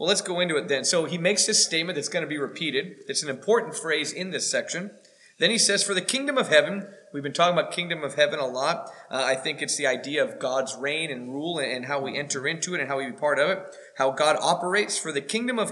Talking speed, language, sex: 270 wpm, English, male